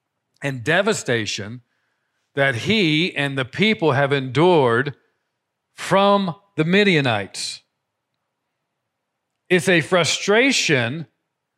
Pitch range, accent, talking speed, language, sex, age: 145-185 Hz, American, 80 wpm, English, male, 50-69